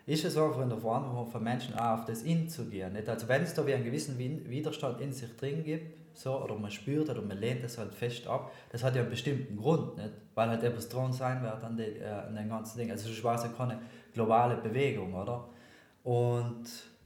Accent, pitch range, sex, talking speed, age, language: German, 115-145 Hz, male, 220 wpm, 20-39, German